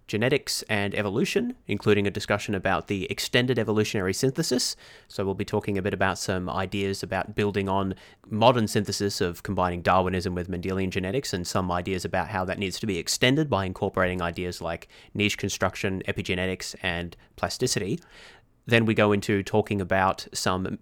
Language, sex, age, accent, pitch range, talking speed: English, male, 30-49, Australian, 95-110 Hz, 165 wpm